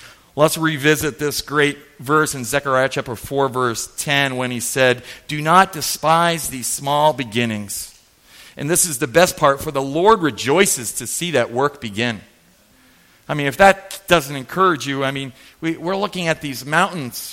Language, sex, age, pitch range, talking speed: English, male, 40-59, 130-165 Hz, 170 wpm